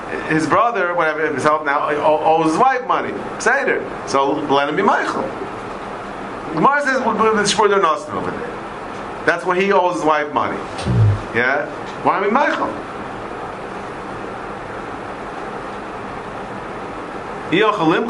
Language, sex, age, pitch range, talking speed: English, male, 40-59, 140-175 Hz, 105 wpm